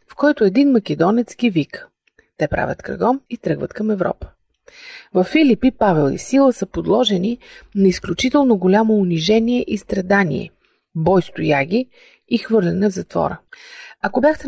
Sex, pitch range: female, 185-245 Hz